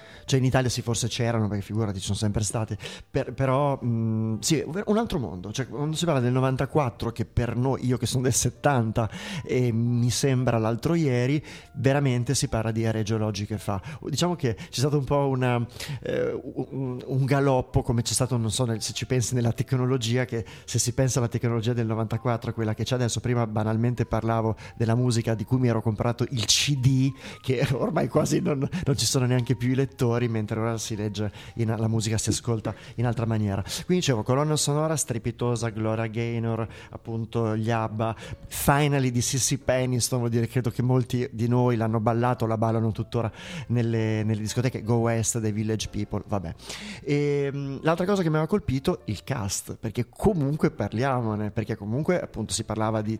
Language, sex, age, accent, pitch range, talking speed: Italian, male, 30-49, native, 110-135 Hz, 190 wpm